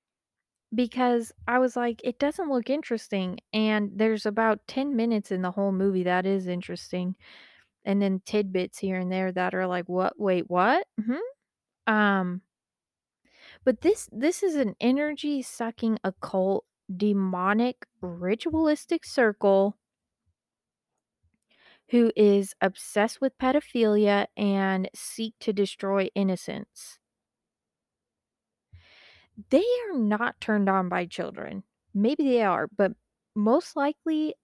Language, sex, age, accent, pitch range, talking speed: English, female, 20-39, American, 190-235 Hz, 120 wpm